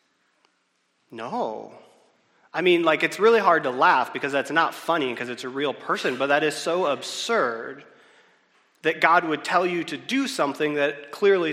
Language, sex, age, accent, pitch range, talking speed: English, male, 30-49, American, 145-210 Hz, 170 wpm